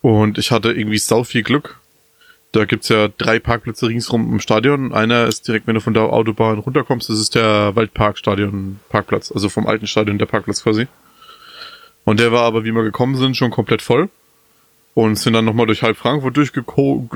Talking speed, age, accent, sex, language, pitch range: 190 wpm, 20-39, German, male, German, 110-135 Hz